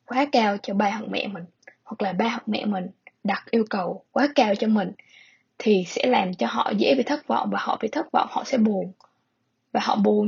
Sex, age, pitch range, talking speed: female, 10-29, 200-255 Hz, 235 wpm